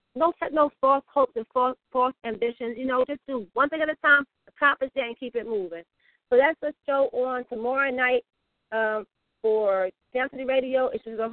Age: 40-59